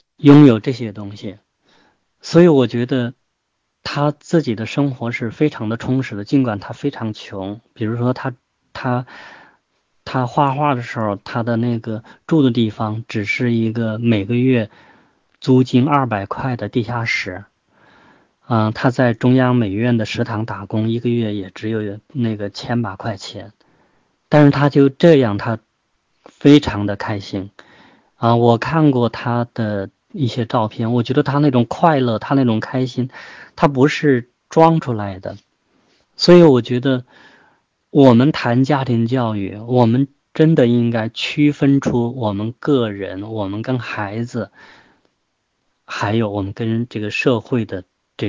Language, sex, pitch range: Chinese, male, 110-130 Hz